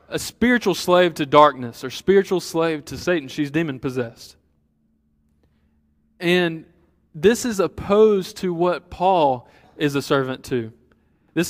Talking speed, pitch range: 125 wpm, 140-180 Hz